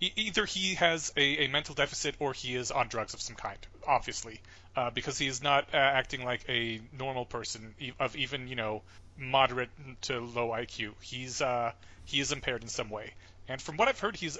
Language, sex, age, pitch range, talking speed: English, male, 30-49, 125-170 Hz, 205 wpm